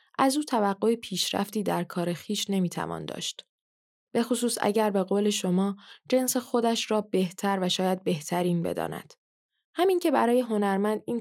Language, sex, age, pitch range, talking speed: Persian, female, 10-29, 185-230 Hz, 145 wpm